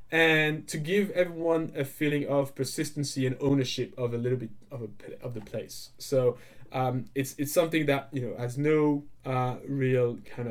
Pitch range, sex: 120-145 Hz, male